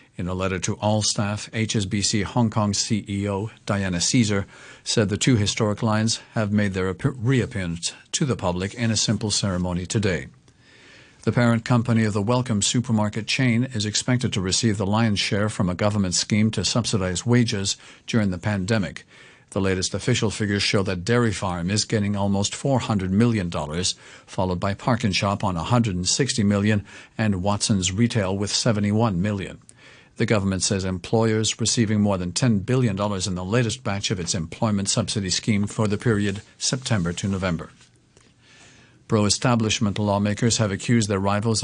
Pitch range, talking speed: 100-115 Hz, 155 wpm